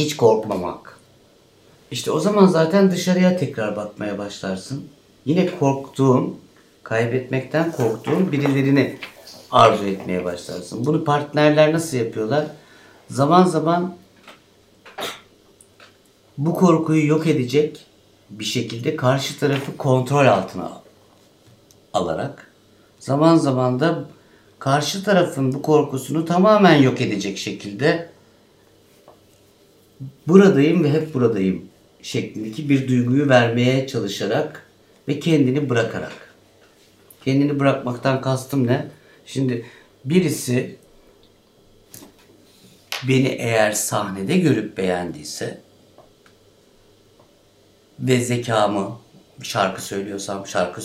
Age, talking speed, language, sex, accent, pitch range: 60-79, 85 wpm, Turkish, male, native, 105-150 Hz